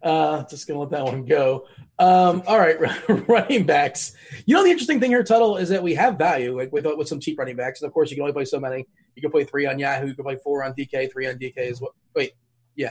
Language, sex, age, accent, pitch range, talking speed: English, male, 20-39, American, 135-170 Hz, 280 wpm